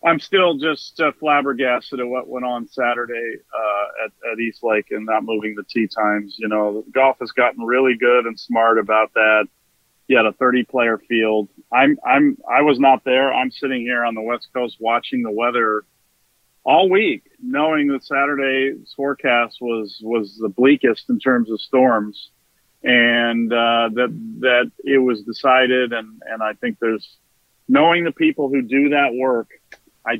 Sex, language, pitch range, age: male, English, 115-140 Hz, 40-59